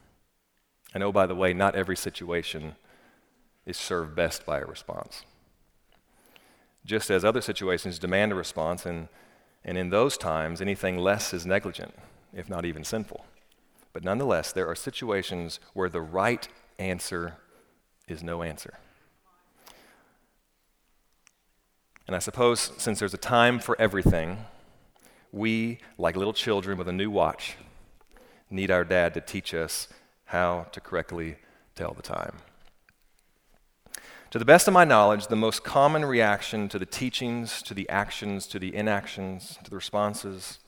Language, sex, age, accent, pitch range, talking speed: English, male, 40-59, American, 90-110 Hz, 145 wpm